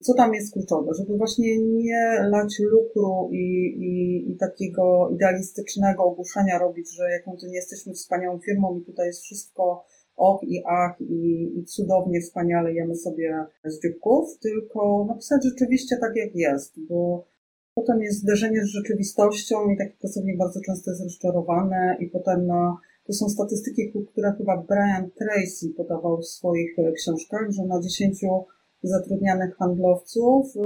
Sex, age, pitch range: female, 30-49, 175-210 Hz